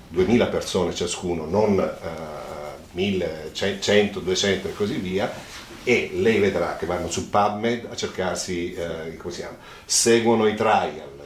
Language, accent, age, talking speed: Italian, native, 40-59, 140 wpm